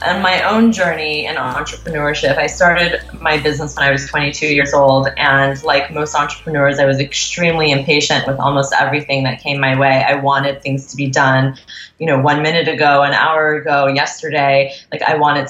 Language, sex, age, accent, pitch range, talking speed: English, female, 20-39, American, 140-175 Hz, 190 wpm